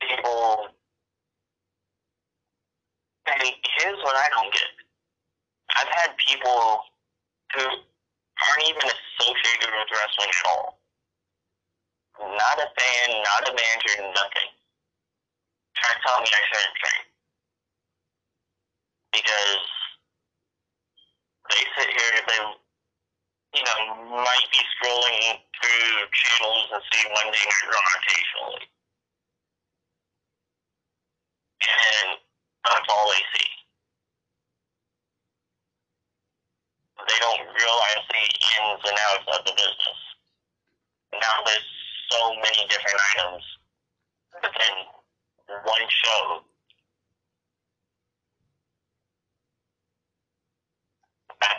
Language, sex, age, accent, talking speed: English, male, 40-59, American, 85 wpm